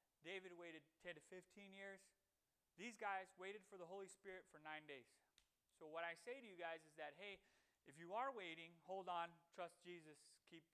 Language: English